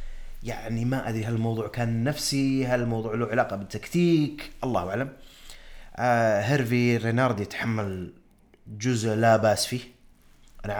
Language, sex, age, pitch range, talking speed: Arabic, male, 30-49, 115-145 Hz, 110 wpm